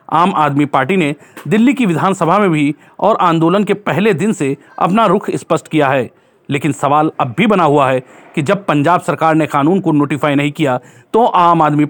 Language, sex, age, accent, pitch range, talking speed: Hindi, male, 40-59, native, 150-190 Hz, 200 wpm